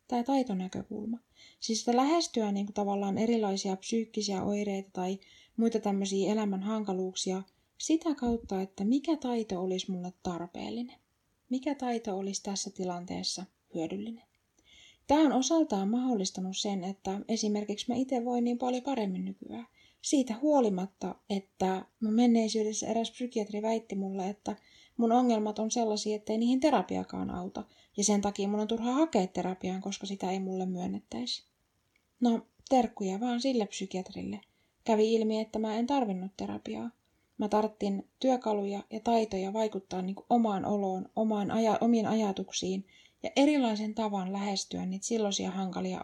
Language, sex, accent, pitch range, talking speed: Finnish, female, native, 190-230 Hz, 140 wpm